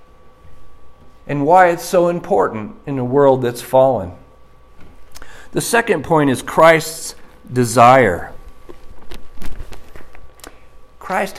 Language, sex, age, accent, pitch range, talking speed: English, male, 50-69, American, 120-170 Hz, 90 wpm